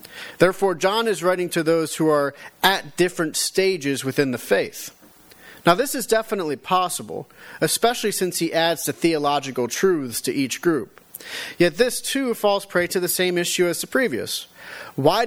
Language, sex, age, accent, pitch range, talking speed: English, male, 30-49, American, 135-180 Hz, 165 wpm